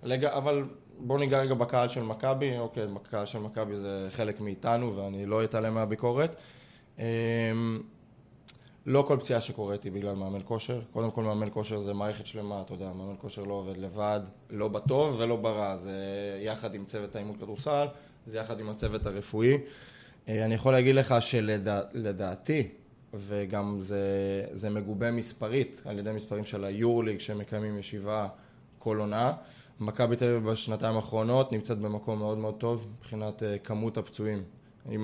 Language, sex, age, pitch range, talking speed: Hebrew, male, 20-39, 105-120 Hz, 150 wpm